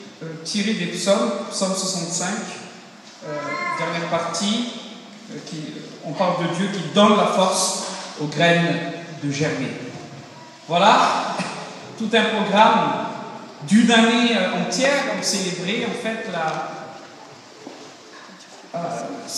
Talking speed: 110 wpm